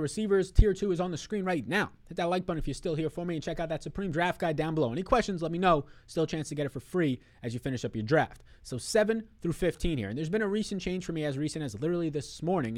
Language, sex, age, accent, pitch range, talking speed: English, male, 20-39, American, 110-155 Hz, 305 wpm